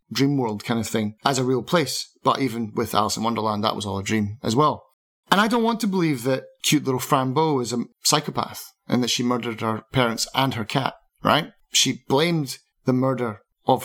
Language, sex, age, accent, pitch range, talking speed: English, male, 30-49, British, 115-145 Hz, 215 wpm